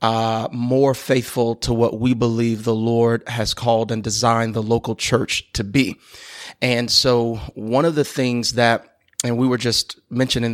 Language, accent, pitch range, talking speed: English, American, 115-130 Hz, 170 wpm